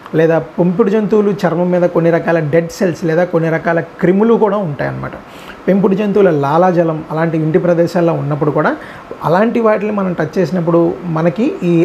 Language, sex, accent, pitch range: Telugu, male, native, 160-210 Hz